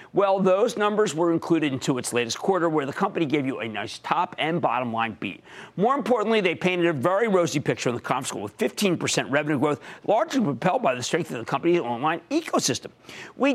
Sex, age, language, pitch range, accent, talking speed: male, 50-69, English, 150-190 Hz, American, 215 wpm